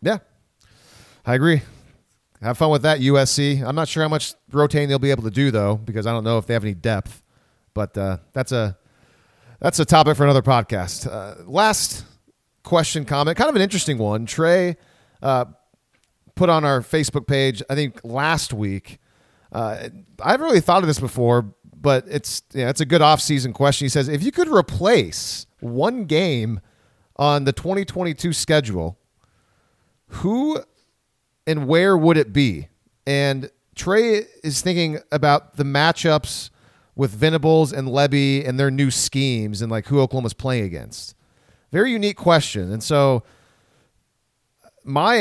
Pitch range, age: 120-155 Hz, 30-49